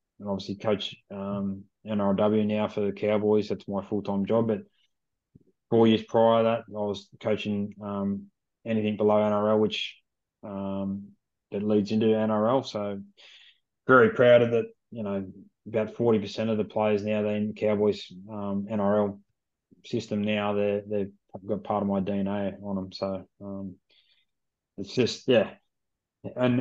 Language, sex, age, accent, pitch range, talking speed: English, male, 20-39, Australian, 100-110 Hz, 155 wpm